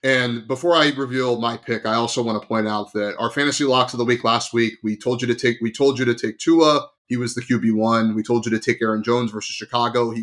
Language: English